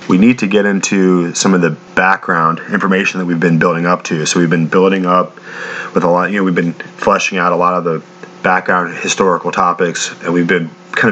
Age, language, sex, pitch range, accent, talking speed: 30-49, English, male, 90-105 Hz, American, 220 wpm